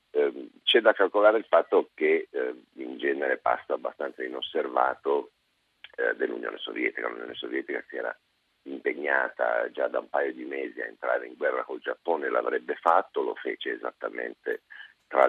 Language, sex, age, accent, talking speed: Italian, male, 50-69, native, 140 wpm